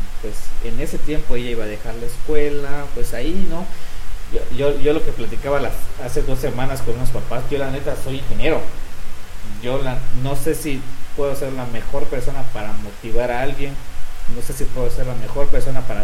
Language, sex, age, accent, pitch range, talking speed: Spanish, male, 40-59, Mexican, 105-140 Hz, 200 wpm